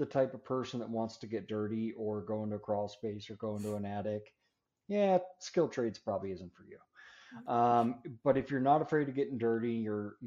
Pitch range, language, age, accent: 105-125 Hz, English, 30-49, American